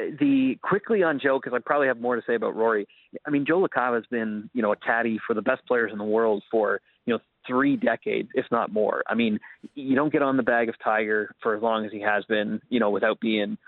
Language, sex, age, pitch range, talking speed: English, male, 30-49, 110-140 Hz, 260 wpm